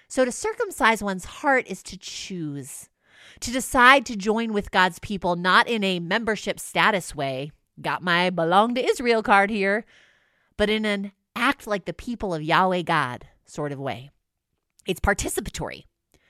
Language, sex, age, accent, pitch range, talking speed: English, female, 30-49, American, 170-235 Hz, 160 wpm